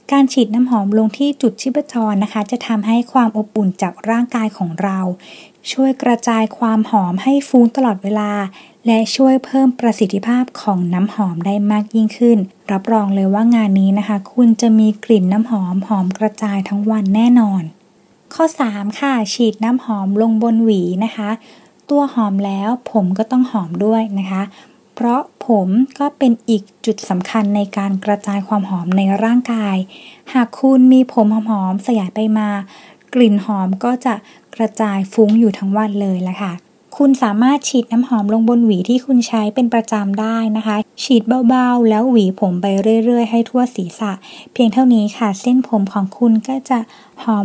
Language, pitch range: Thai, 205-245 Hz